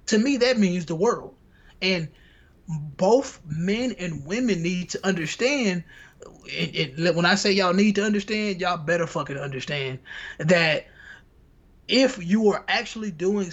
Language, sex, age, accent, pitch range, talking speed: English, male, 20-39, American, 165-205 Hz, 140 wpm